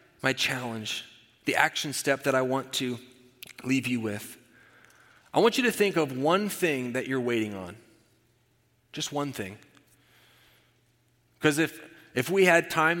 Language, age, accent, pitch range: English, 30-49, American, 120-150 Hz